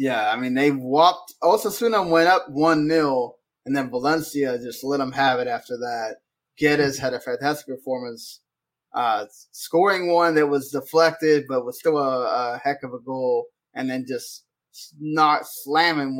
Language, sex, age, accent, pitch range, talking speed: English, male, 20-39, American, 130-165 Hz, 165 wpm